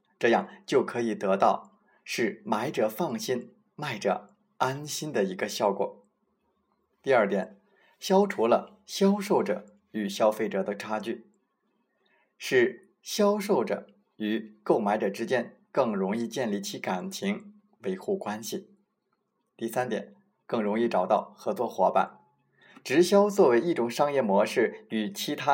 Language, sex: Chinese, male